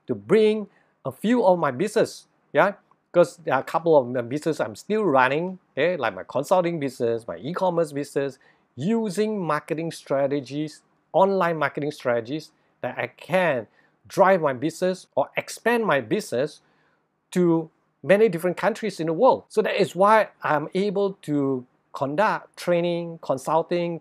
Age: 50-69